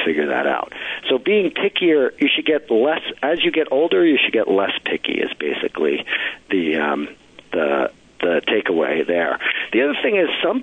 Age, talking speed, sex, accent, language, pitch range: 50-69, 180 wpm, male, American, English, 105-170 Hz